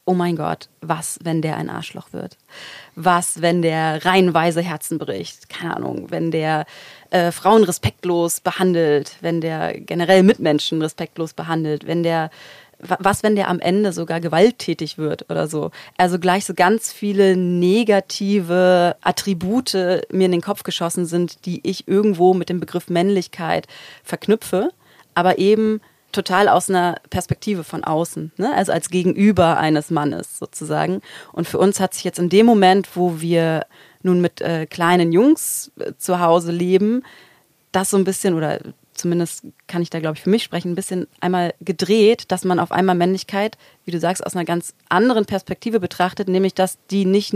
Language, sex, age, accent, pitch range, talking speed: German, female, 30-49, German, 170-195 Hz, 170 wpm